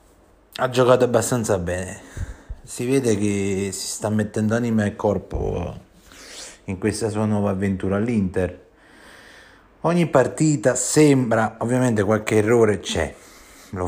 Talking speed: 115 wpm